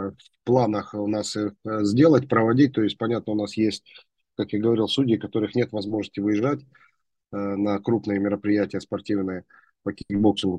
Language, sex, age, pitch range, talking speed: Russian, male, 30-49, 100-115 Hz, 160 wpm